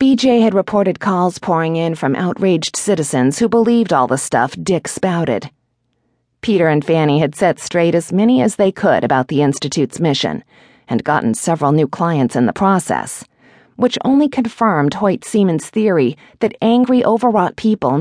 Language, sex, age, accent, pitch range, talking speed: English, female, 40-59, American, 140-210 Hz, 165 wpm